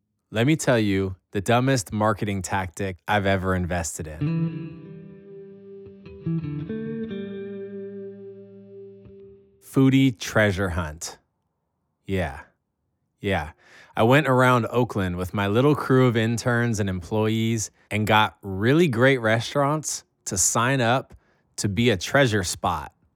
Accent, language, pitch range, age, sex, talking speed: American, English, 100-130 Hz, 20-39, male, 110 wpm